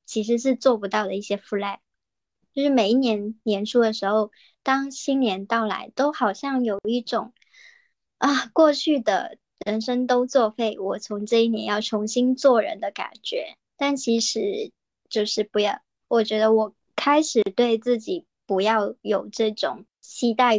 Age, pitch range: 10-29, 215-265 Hz